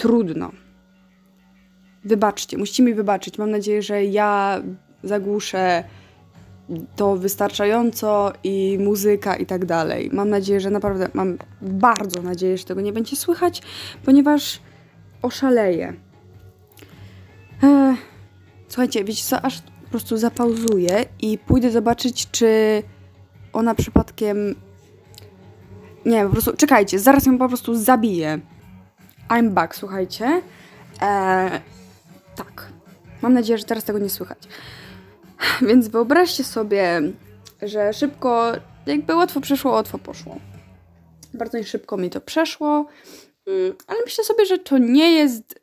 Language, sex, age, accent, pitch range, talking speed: Polish, female, 20-39, native, 185-245 Hz, 115 wpm